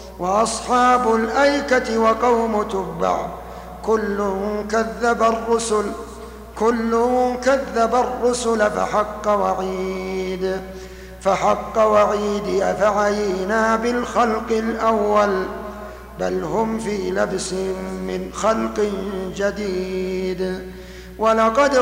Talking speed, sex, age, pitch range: 65 wpm, male, 50-69, 195-230 Hz